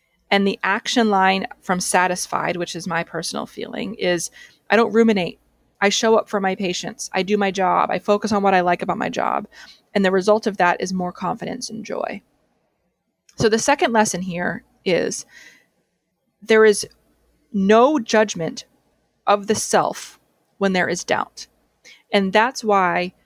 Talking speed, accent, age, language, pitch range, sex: 165 wpm, American, 20-39, English, 185-225 Hz, female